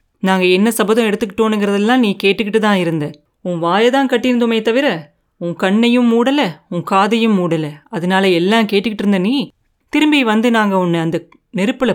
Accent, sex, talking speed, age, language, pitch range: native, female, 150 wpm, 30-49, Tamil, 175-225 Hz